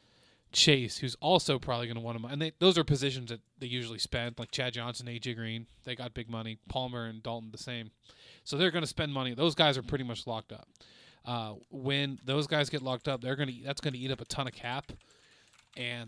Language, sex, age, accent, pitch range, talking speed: English, male, 20-39, American, 115-135 Hz, 235 wpm